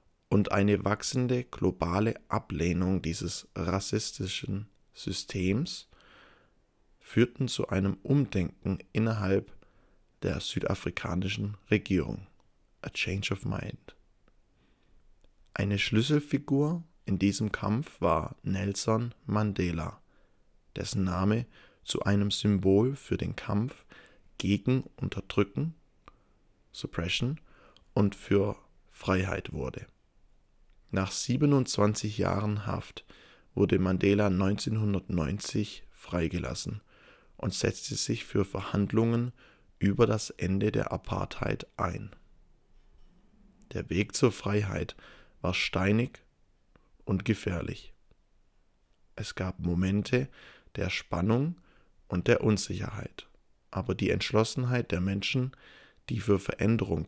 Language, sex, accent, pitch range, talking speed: English, male, German, 95-115 Hz, 90 wpm